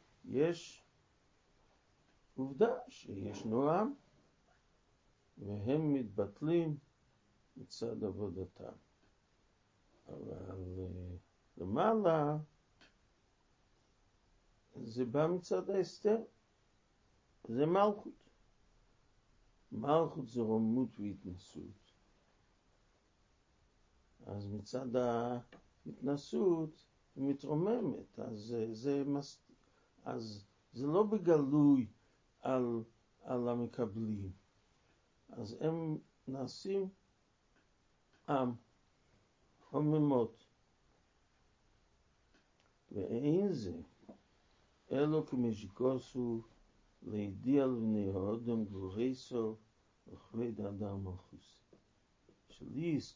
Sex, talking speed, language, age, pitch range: male, 60 wpm, Hebrew, 50-69, 105-150 Hz